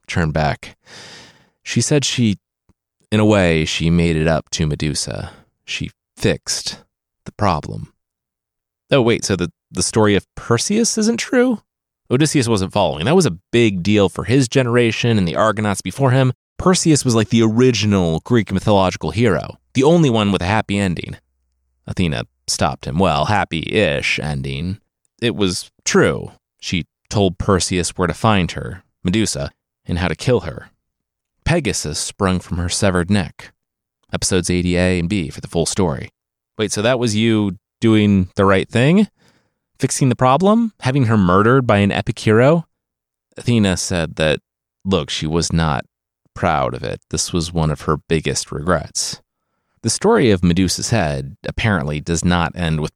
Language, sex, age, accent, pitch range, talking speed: English, male, 30-49, American, 85-120 Hz, 160 wpm